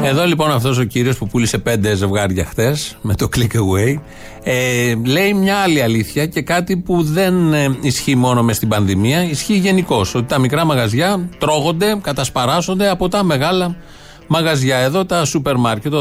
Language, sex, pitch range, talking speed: Greek, male, 120-165 Hz, 170 wpm